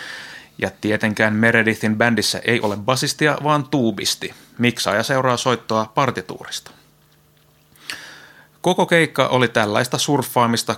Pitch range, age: 110-135 Hz, 30-49